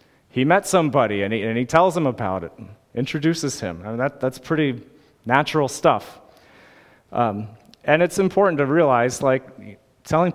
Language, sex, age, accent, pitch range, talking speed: English, male, 30-49, American, 115-150 Hz, 160 wpm